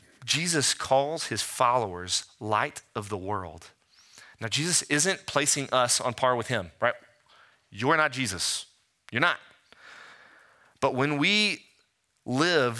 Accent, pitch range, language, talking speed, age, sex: American, 105-145 Hz, English, 125 wpm, 30-49, male